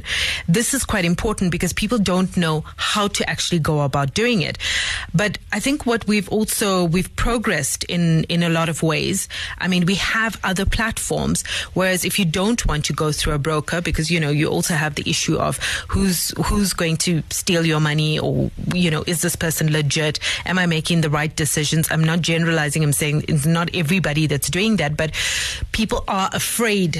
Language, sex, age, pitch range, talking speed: English, female, 30-49, 160-195 Hz, 200 wpm